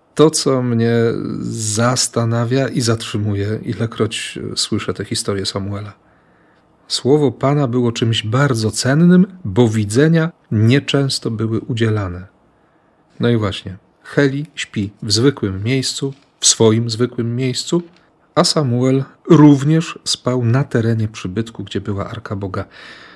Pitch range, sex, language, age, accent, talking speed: 105-135 Hz, male, Polish, 40-59, native, 115 wpm